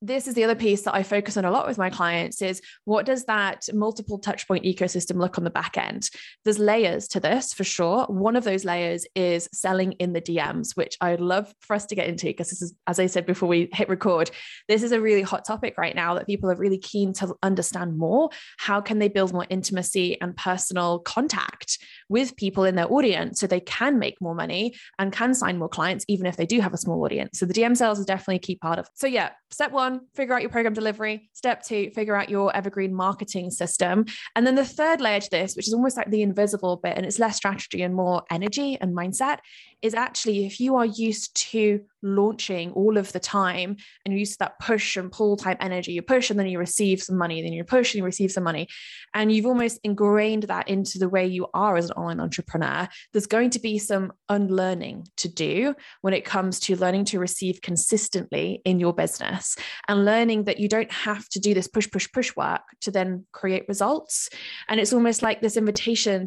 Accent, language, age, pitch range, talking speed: British, English, 20-39, 185-220 Hz, 230 wpm